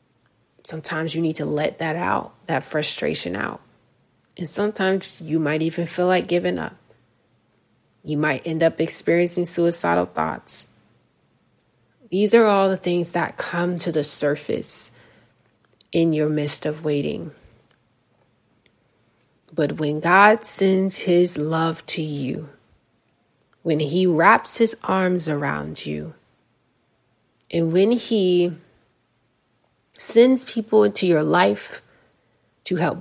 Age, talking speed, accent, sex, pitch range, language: 30-49, 120 wpm, American, female, 145-180 Hz, English